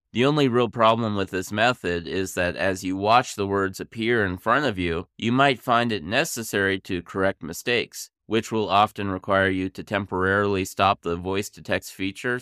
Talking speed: 185 wpm